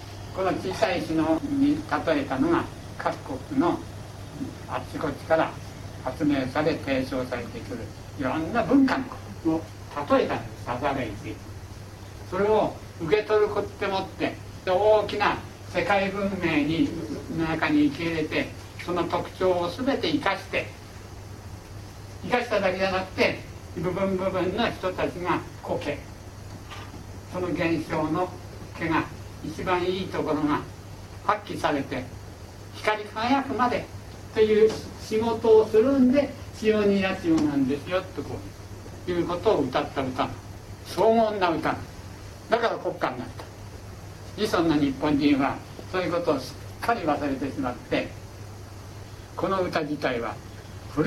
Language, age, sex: Japanese, 60-79, male